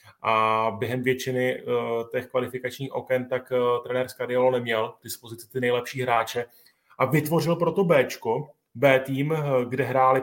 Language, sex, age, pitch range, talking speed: Czech, male, 30-49, 125-145 Hz, 135 wpm